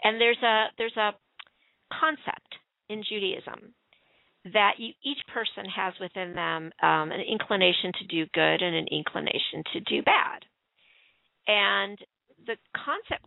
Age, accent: 40-59, American